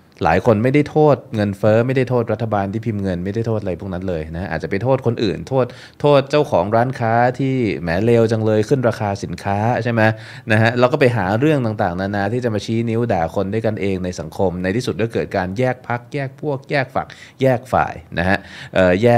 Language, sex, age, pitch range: Thai, male, 20-39, 90-115 Hz